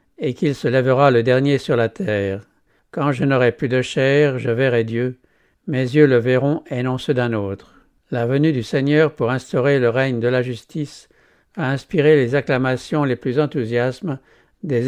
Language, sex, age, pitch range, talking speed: English, male, 60-79, 120-145 Hz, 185 wpm